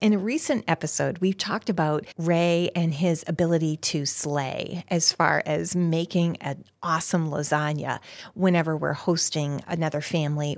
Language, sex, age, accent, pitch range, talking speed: English, female, 40-59, American, 155-190 Hz, 140 wpm